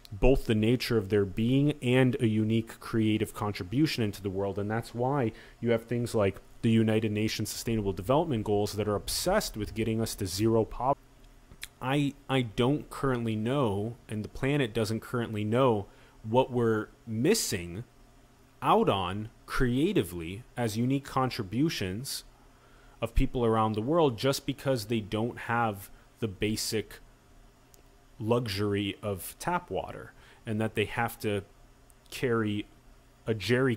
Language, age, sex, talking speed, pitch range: English, 30-49, male, 140 wpm, 105-130 Hz